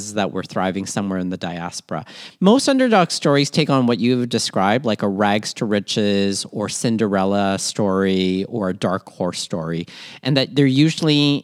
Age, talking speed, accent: 40-59, 170 wpm, American